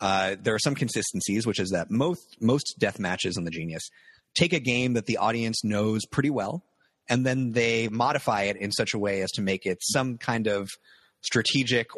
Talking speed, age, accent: 205 wpm, 30-49, American